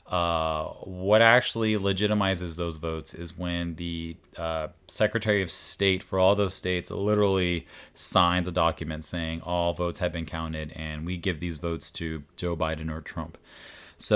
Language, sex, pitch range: English, male, 85-105 Hz